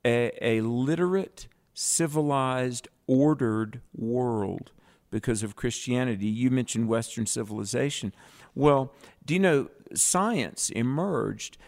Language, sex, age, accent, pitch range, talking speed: English, male, 50-69, American, 110-135 Hz, 100 wpm